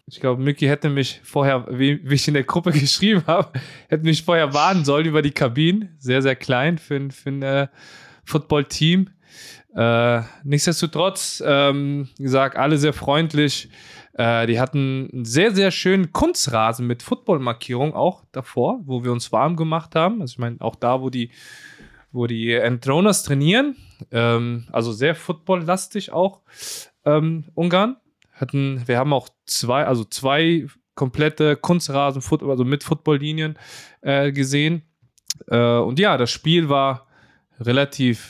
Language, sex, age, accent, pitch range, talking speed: German, male, 20-39, German, 125-160 Hz, 145 wpm